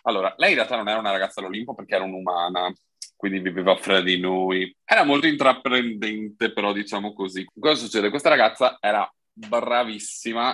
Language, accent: Italian, native